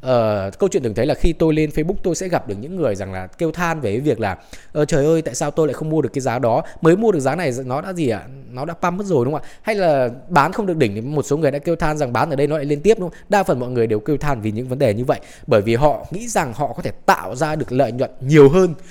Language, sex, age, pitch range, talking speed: Vietnamese, male, 20-39, 125-180 Hz, 330 wpm